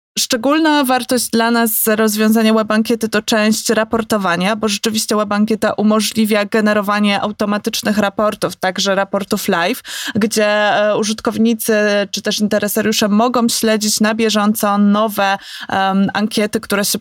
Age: 20-39